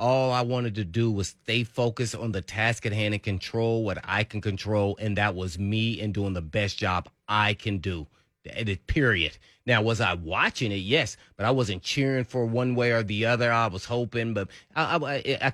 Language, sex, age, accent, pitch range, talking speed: English, male, 30-49, American, 85-110 Hz, 210 wpm